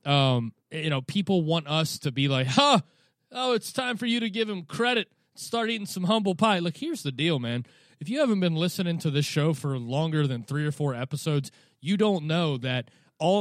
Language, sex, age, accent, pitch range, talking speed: English, male, 30-49, American, 140-180 Hz, 220 wpm